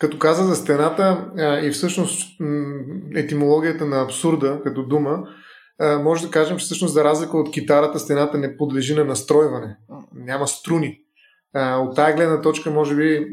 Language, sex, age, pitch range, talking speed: Bulgarian, male, 30-49, 140-165 Hz, 150 wpm